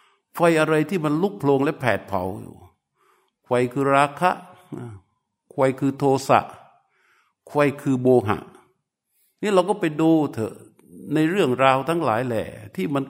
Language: Thai